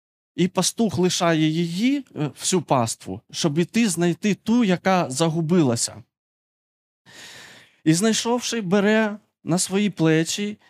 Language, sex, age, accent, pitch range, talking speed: Ukrainian, male, 20-39, native, 140-195 Hz, 100 wpm